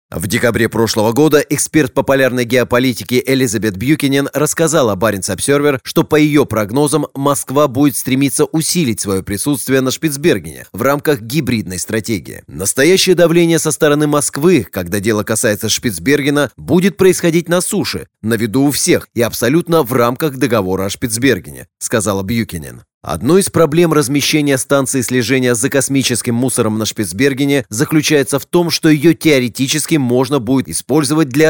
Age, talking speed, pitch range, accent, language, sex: 30-49, 145 wpm, 115-150 Hz, native, Russian, male